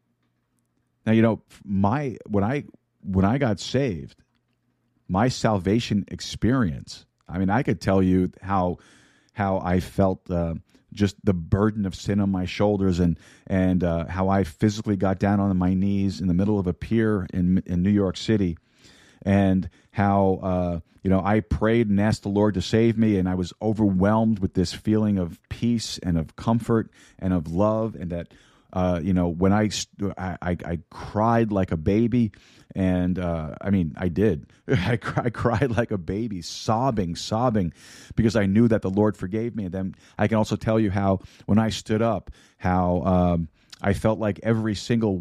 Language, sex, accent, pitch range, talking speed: English, male, American, 90-110 Hz, 180 wpm